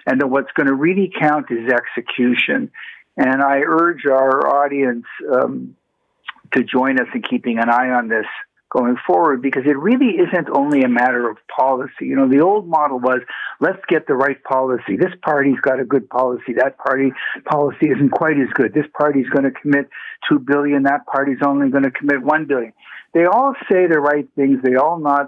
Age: 60-79